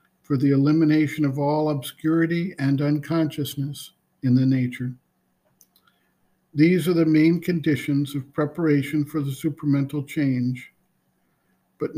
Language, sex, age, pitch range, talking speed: English, male, 50-69, 140-160 Hz, 115 wpm